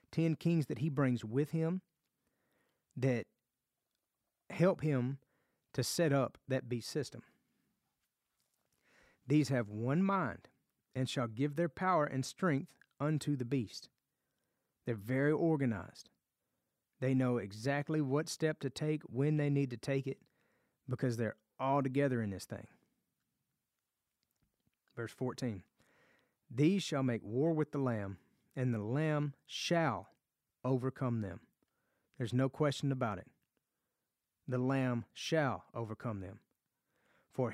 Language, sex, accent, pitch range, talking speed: English, male, American, 120-160 Hz, 125 wpm